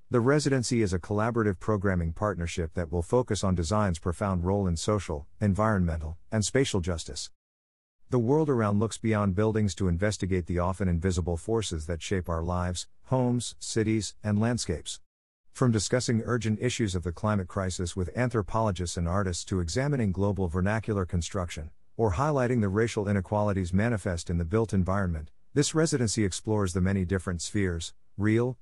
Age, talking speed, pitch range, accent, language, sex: 50-69, 155 wpm, 90-110 Hz, American, English, male